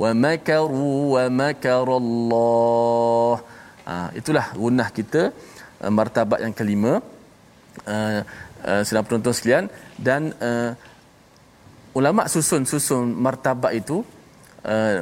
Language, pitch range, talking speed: Malayalam, 120-175 Hz, 100 wpm